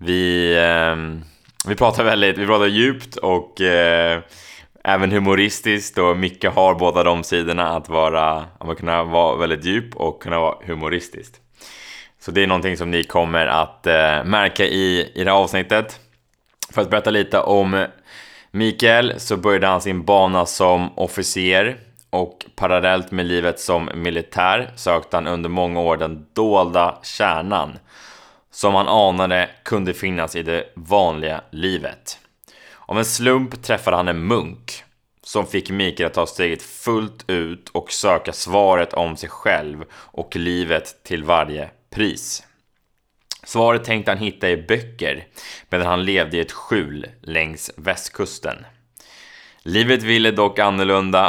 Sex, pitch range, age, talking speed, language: male, 85-100 Hz, 20-39, 145 wpm, Swedish